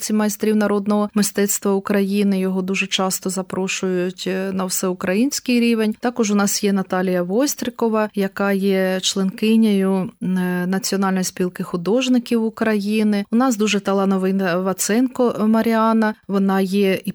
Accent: native